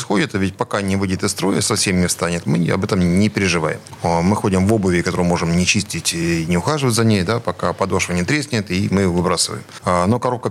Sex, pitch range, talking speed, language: male, 90-110 Hz, 215 wpm, Russian